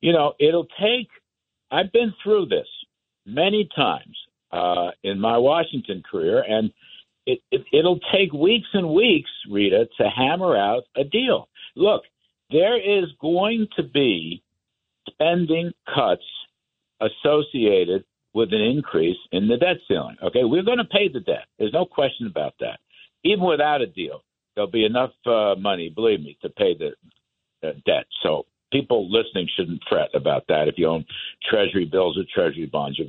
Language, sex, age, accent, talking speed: English, male, 60-79, American, 160 wpm